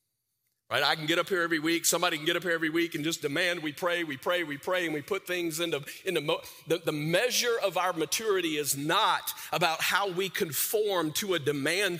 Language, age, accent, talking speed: English, 40-59, American, 220 wpm